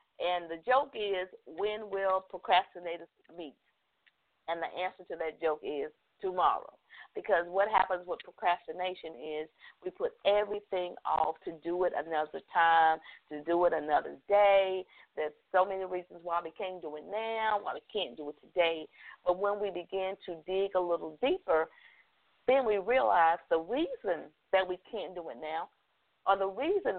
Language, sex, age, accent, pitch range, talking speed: English, female, 50-69, American, 170-215 Hz, 165 wpm